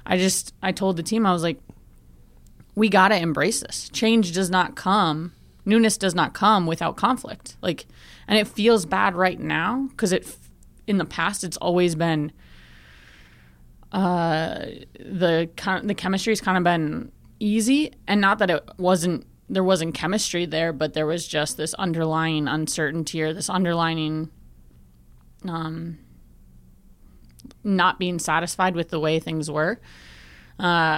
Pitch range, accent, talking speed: 155-185 Hz, American, 145 wpm